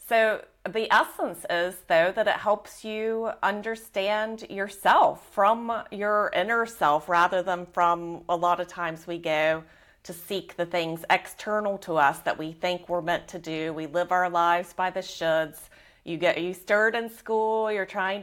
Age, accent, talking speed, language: 30-49, American, 175 wpm, English